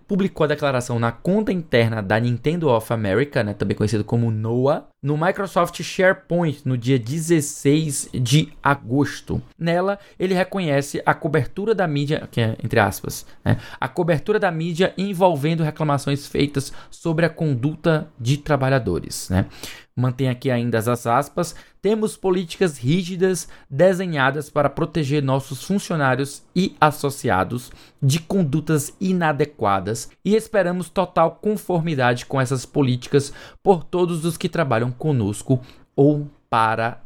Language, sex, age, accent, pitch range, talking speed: Portuguese, male, 20-39, Brazilian, 120-170 Hz, 130 wpm